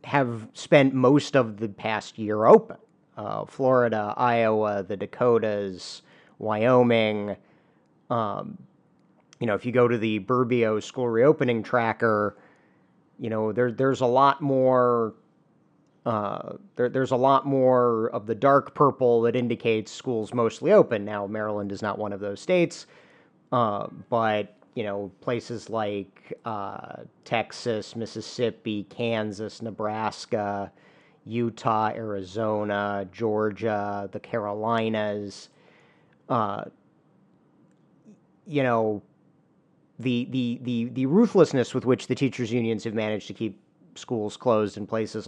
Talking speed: 125 wpm